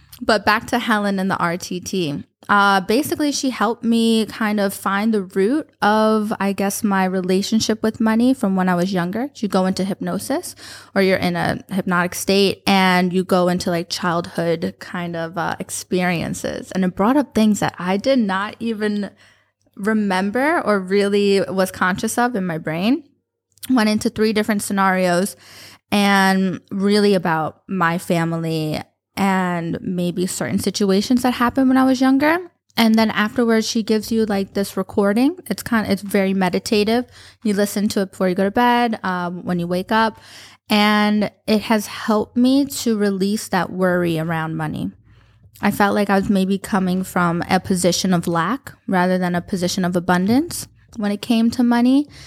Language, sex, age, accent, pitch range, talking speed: English, female, 20-39, American, 185-225 Hz, 175 wpm